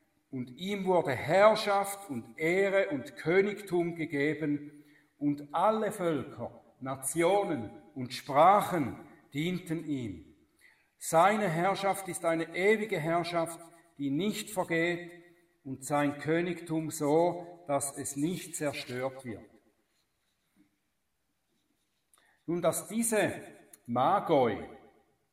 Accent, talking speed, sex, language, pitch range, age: German, 90 wpm, male, German, 140-190 Hz, 50-69